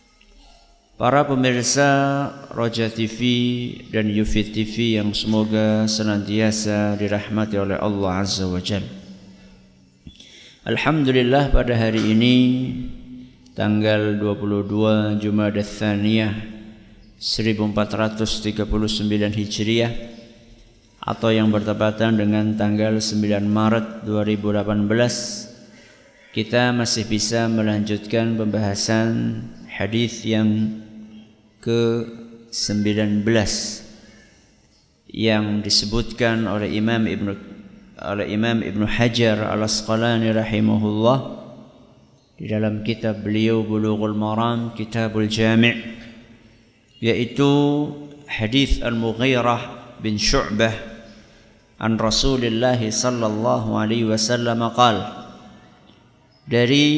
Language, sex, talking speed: Indonesian, male, 80 wpm